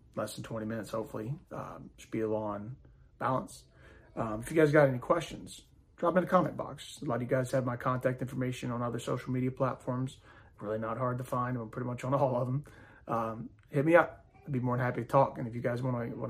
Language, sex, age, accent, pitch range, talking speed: English, male, 30-49, American, 115-140 Hz, 245 wpm